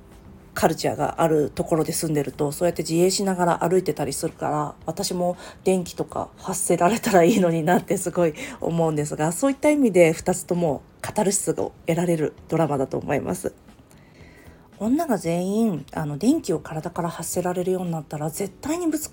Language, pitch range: Japanese, 165-225 Hz